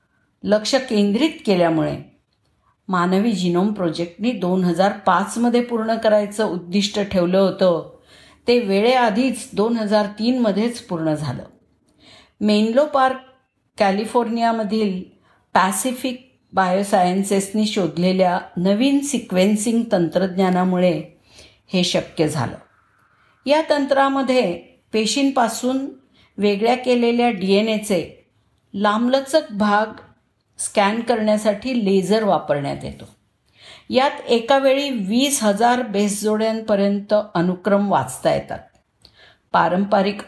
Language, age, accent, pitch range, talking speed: Marathi, 50-69, native, 180-230 Hz, 80 wpm